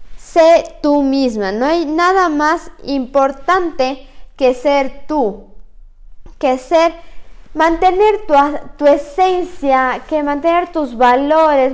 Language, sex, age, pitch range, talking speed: Spanish, female, 20-39, 260-335 Hz, 105 wpm